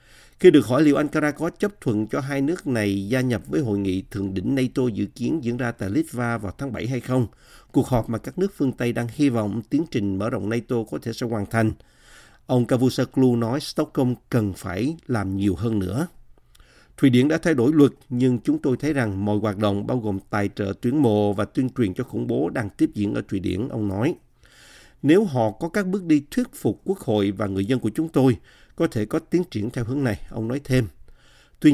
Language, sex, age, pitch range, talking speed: Vietnamese, male, 50-69, 105-140 Hz, 235 wpm